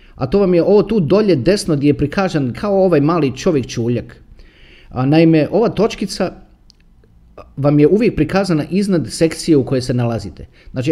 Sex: male